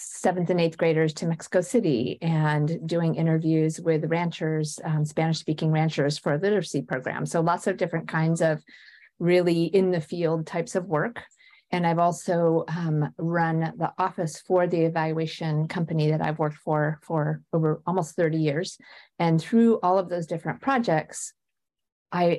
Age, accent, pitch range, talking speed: 40-59, American, 155-180 Hz, 160 wpm